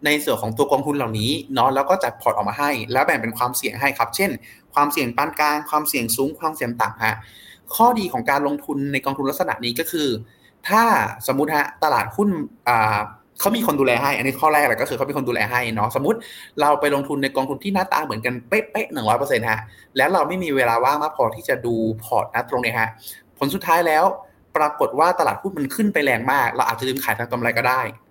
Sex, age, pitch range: male, 20-39, 115-145 Hz